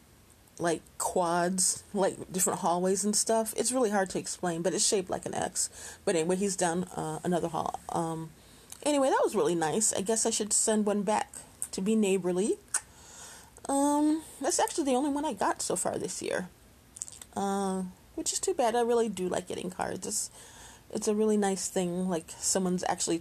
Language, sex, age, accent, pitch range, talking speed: English, female, 30-49, American, 175-230 Hz, 190 wpm